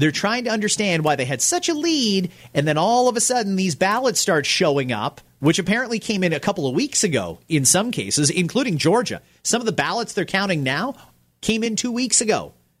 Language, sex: English, male